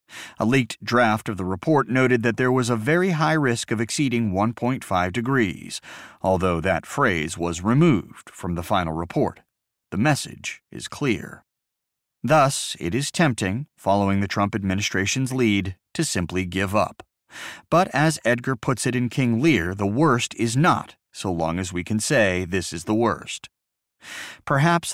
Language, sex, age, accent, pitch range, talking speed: English, male, 30-49, American, 95-130 Hz, 160 wpm